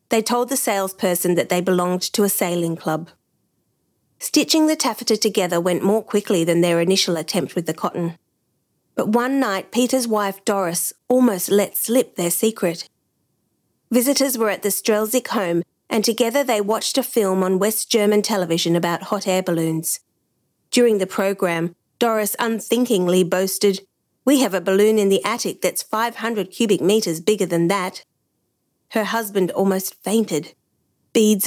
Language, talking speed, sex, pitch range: English, 155 wpm, female, 180-225 Hz